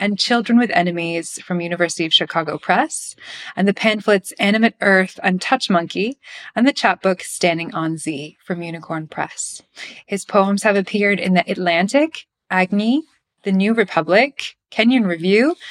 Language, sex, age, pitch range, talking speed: English, female, 20-39, 175-215 Hz, 150 wpm